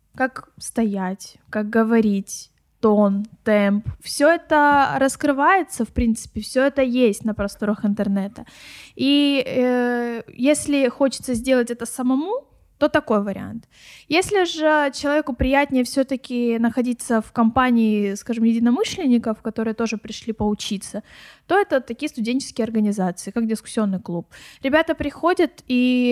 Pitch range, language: 225-280 Hz, Russian